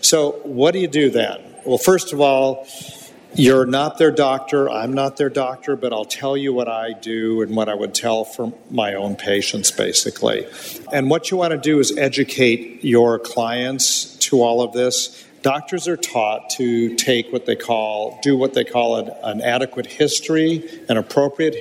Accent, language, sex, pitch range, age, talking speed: American, English, male, 115-135 Hz, 50-69, 185 wpm